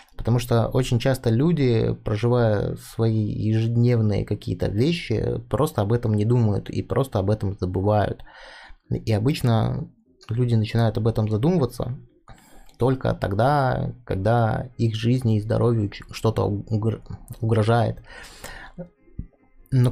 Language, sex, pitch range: Russian, male, 105-125 Hz